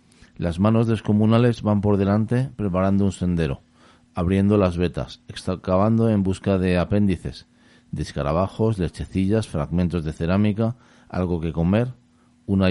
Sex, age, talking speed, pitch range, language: male, 40-59, 125 wpm, 80-105 Hz, Spanish